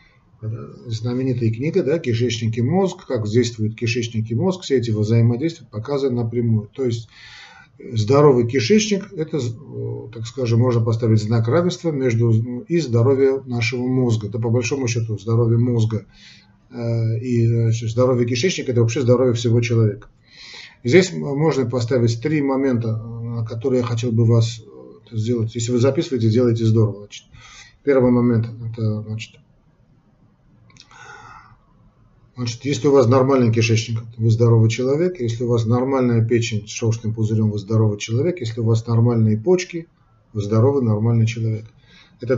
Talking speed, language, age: 135 wpm, Russian, 40-59